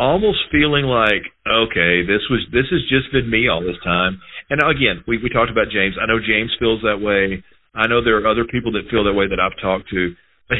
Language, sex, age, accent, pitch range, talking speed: English, male, 40-59, American, 100-130 Hz, 240 wpm